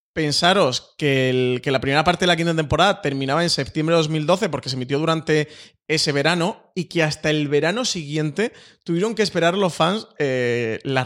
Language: Spanish